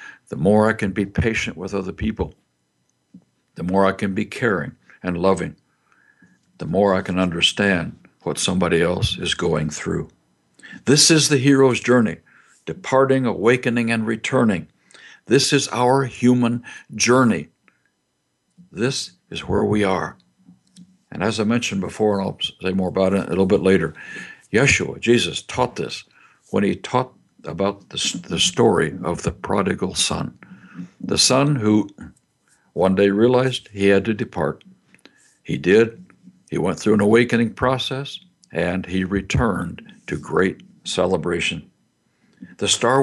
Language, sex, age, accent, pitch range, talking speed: English, male, 60-79, American, 95-125 Hz, 145 wpm